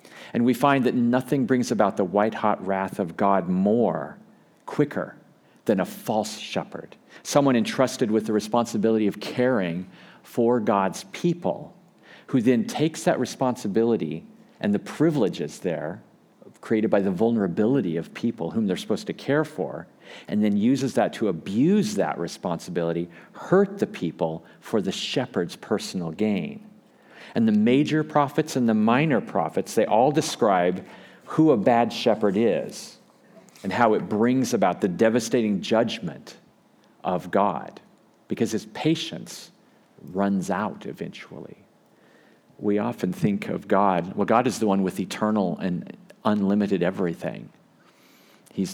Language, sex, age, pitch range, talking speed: English, male, 50-69, 95-135 Hz, 140 wpm